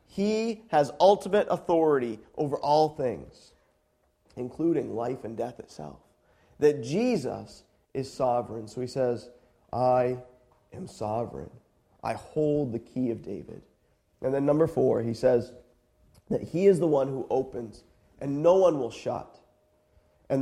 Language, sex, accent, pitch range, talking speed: English, male, American, 135-215 Hz, 140 wpm